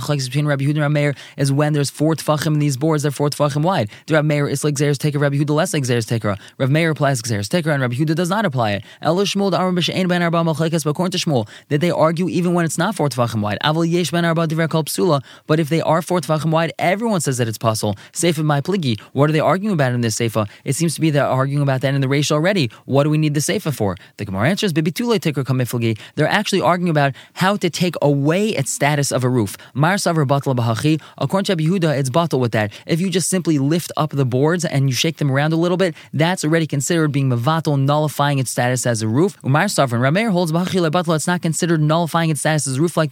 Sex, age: male, 20-39